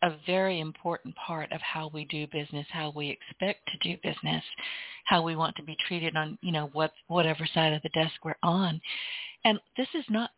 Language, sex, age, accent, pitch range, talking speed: English, female, 50-69, American, 155-190 Hz, 210 wpm